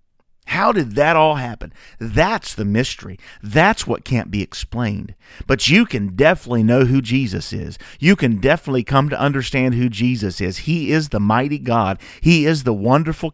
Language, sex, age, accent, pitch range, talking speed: English, male, 40-59, American, 105-145 Hz, 175 wpm